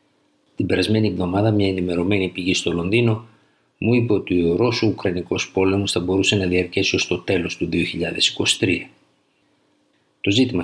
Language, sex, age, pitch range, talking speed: Greek, male, 50-69, 90-110 Hz, 140 wpm